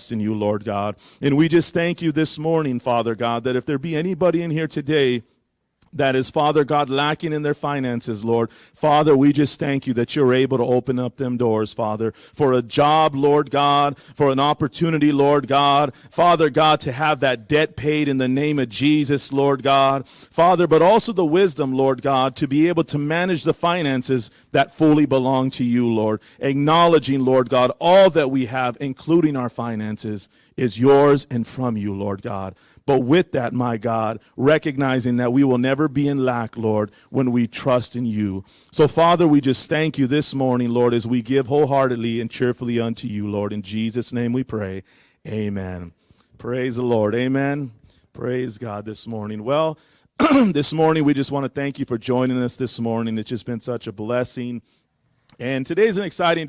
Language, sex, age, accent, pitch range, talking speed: English, male, 40-59, American, 120-150 Hz, 190 wpm